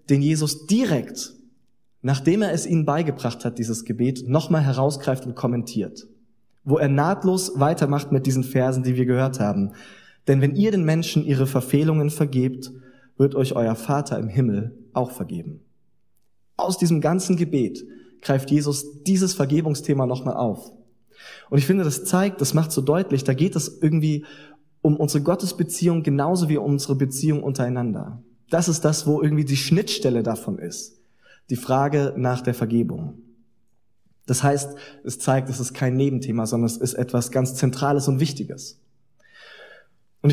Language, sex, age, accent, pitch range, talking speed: German, male, 20-39, German, 125-155 Hz, 155 wpm